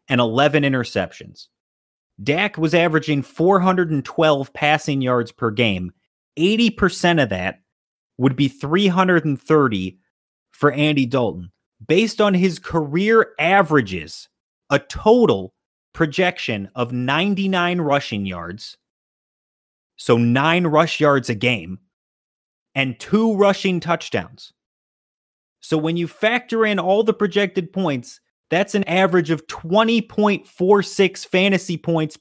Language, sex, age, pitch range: English, male, 30-49, 135-180 Hz